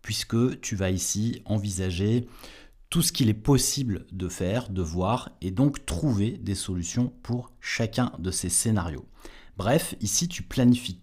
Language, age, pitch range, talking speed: French, 30-49, 100-140 Hz, 150 wpm